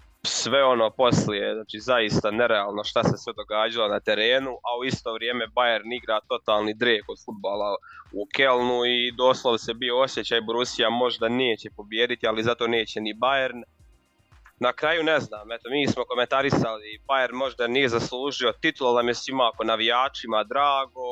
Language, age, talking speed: Croatian, 20-39, 160 wpm